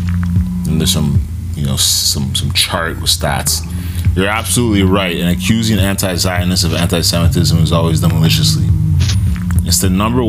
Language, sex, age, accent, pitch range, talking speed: English, male, 20-39, American, 90-100 Hz, 145 wpm